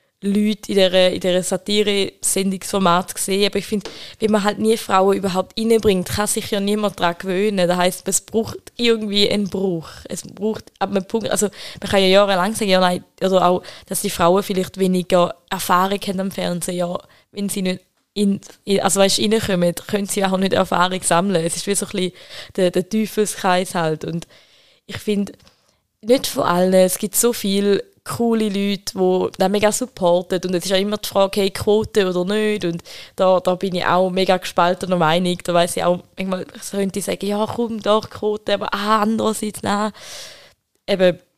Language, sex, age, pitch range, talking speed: German, female, 20-39, 180-210 Hz, 180 wpm